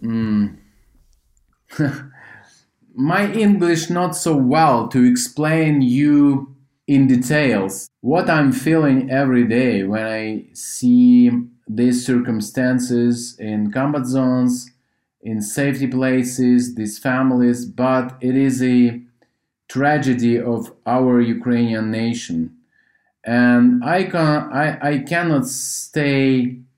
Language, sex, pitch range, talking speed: English, male, 120-145 Hz, 100 wpm